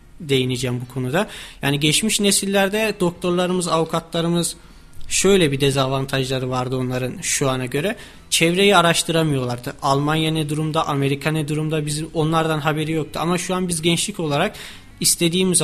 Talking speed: 135 wpm